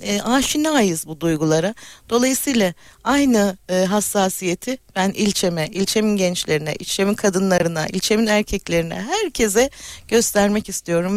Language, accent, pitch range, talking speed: Turkish, native, 185-235 Hz, 100 wpm